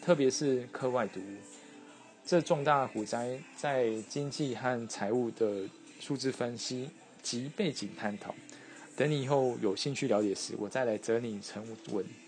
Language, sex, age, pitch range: Chinese, male, 20-39, 110-140 Hz